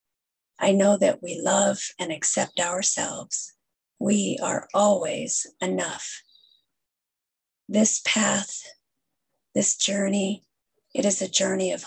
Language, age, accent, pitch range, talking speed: English, 40-59, American, 185-215 Hz, 105 wpm